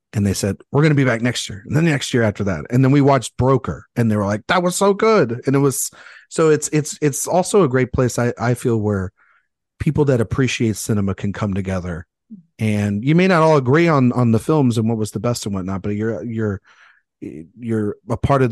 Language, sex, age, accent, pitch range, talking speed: English, male, 40-59, American, 100-135 Hz, 245 wpm